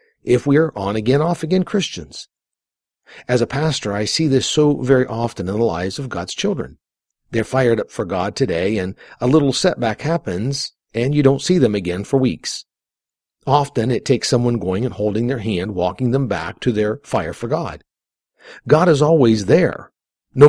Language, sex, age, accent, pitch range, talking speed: English, male, 50-69, American, 105-140 Hz, 180 wpm